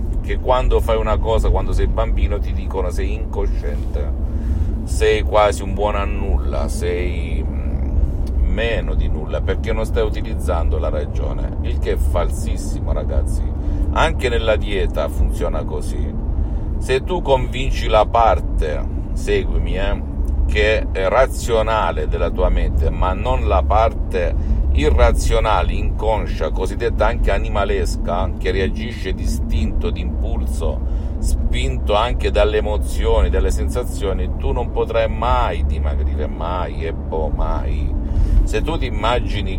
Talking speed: 125 wpm